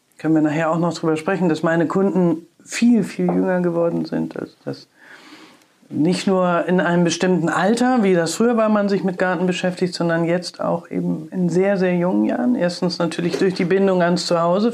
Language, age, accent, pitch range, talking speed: German, 50-69, German, 170-215 Hz, 195 wpm